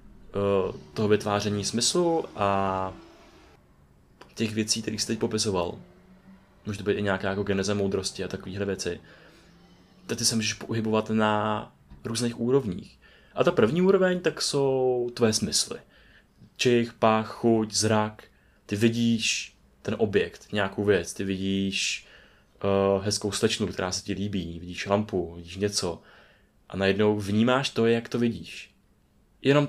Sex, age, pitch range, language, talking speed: male, 20-39, 100-115 Hz, Czech, 135 wpm